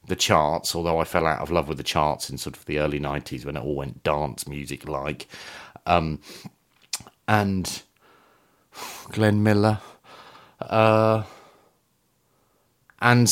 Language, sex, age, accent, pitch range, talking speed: English, male, 40-59, British, 85-115 Hz, 135 wpm